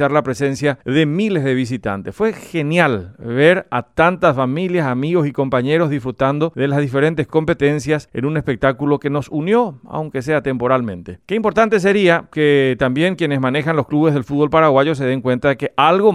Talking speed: 175 wpm